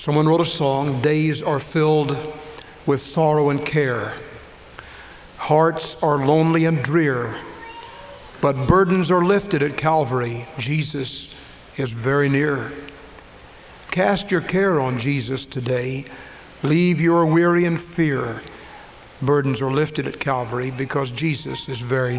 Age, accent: 60-79, American